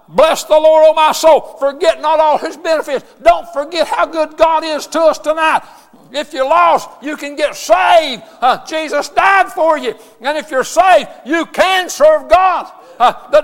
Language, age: English, 60-79